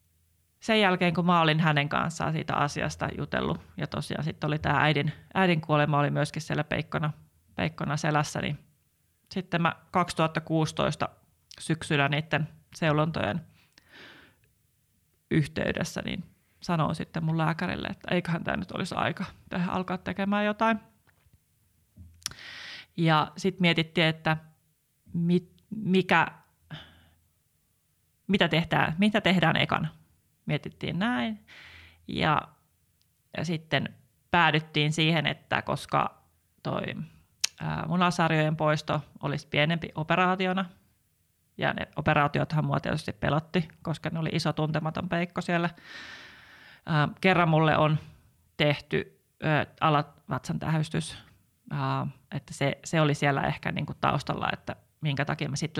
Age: 30-49